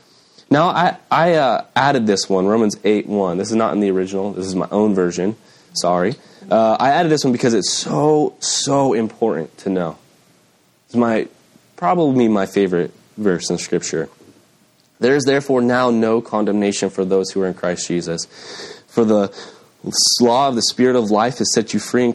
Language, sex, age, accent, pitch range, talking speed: English, male, 20-39, American, 95-115 Hz, 180 wpm